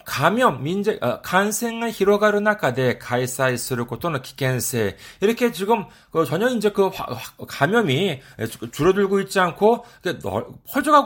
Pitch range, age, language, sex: 140-225 Hz, 40-59, Korean, male